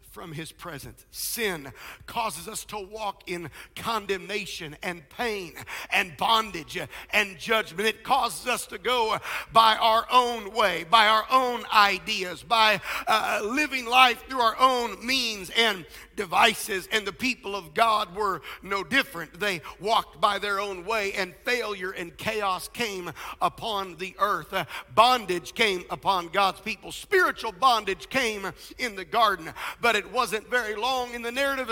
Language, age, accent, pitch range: English, 50-69, American, 190-230 Hz